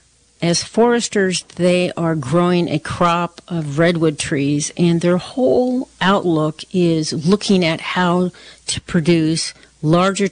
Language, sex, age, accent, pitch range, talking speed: English, female, 50-69, American, 155-185 Hz, 120 wpm